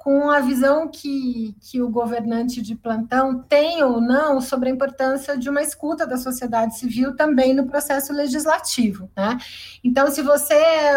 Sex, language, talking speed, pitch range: female, Portuguese, 165 wpm, 230-280 Hz